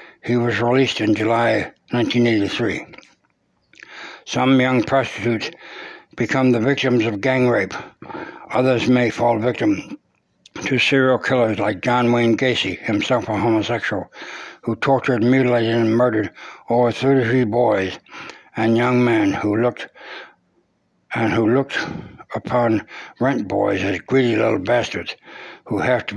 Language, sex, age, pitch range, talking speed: English, male, 60-79, 115-130 Hz, 125 wpm